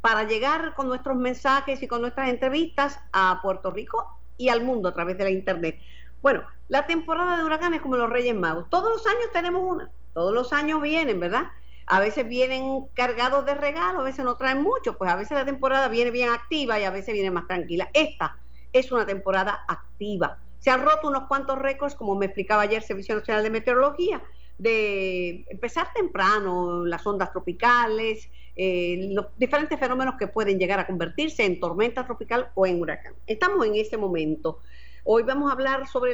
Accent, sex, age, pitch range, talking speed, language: American, female, 50-69, 185-270 Hz, 190 wpm, Spanish